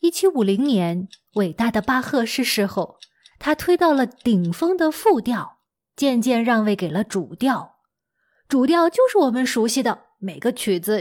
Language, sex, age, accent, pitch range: Chinese, female, 20-39, native, 210-290 Hz